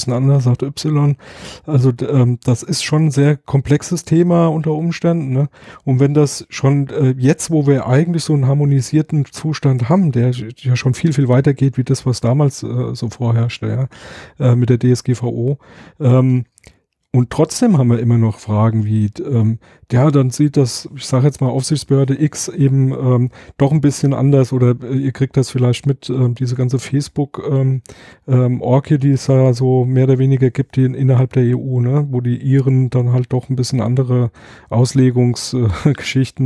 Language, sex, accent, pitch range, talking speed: German, male, German, 125-140 Hz, 185 wpm